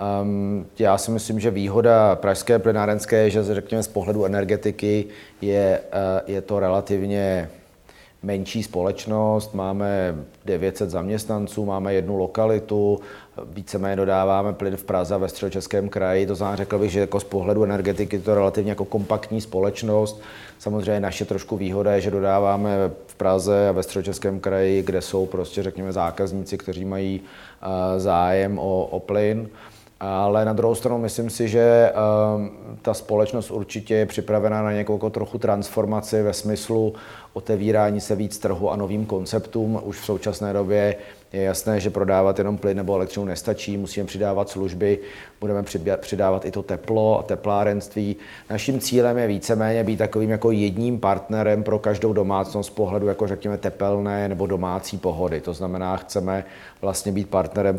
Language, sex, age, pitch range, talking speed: Czech, male, 30-49, 95-105 Hz, 155 wpm